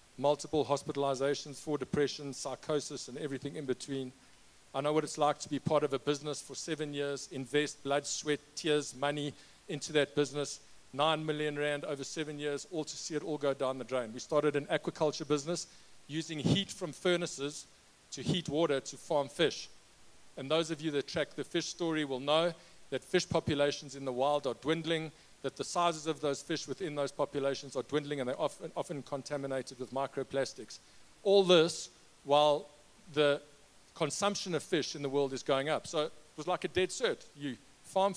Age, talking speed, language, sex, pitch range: 50-69, 190 wpm, English, male, 135-160 Hz